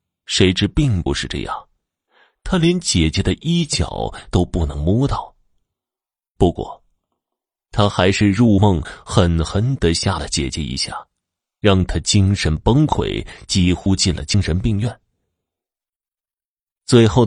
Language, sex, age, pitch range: Chinese, male, 30-49, 85-110 Hz